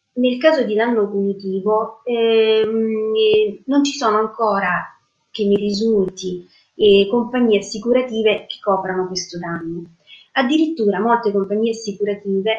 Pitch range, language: 190-230 Hz, Italian